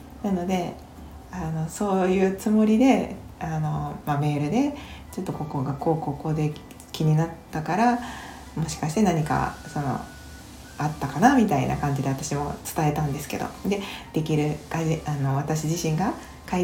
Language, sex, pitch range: Japanese, female, 150-205 Hz